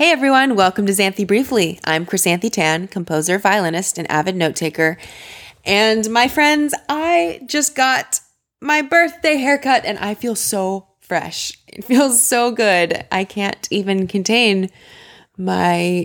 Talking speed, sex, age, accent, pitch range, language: 140 wpm, female, 20-39, American, 155-200 Hz, English